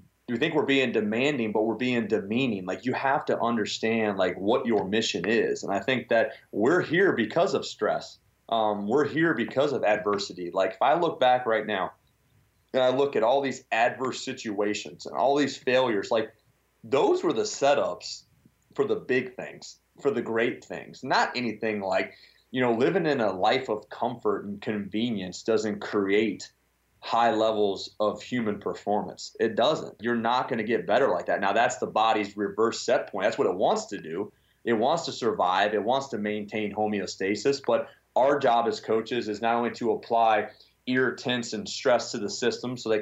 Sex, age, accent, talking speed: male, 30-49, American, 190 wpm